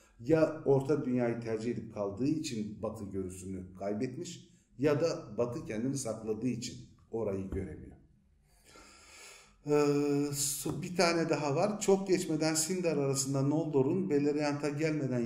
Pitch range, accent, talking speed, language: 110-150 Hz, native, 120 wpm, Turkish